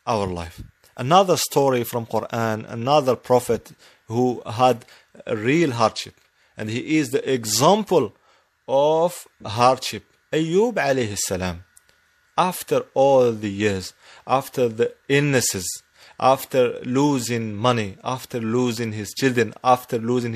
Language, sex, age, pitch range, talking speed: English, male, 30-49, 115-150 Hz, 110 wpm